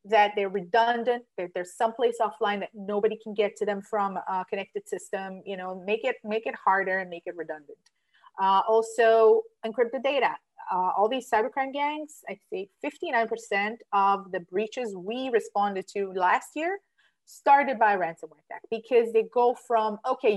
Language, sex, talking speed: English, female, 175 wpm